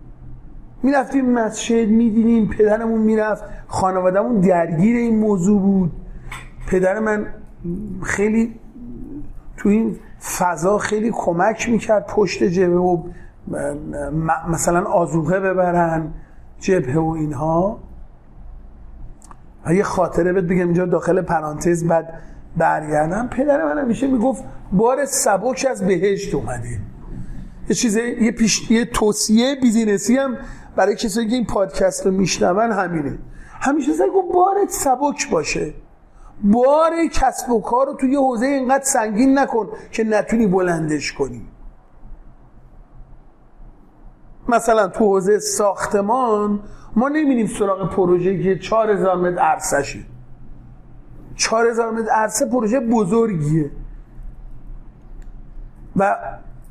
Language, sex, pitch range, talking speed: Persian, male, 180-235 Hz, 105 wpm